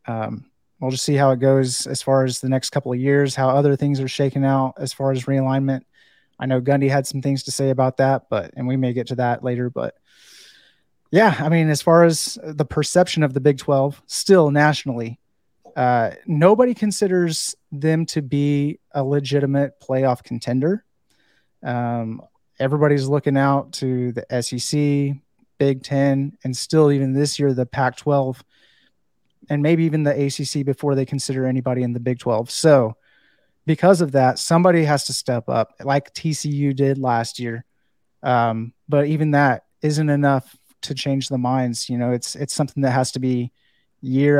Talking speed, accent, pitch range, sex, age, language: 180 wpm, American, 130-150 Hz, male, 30-49, English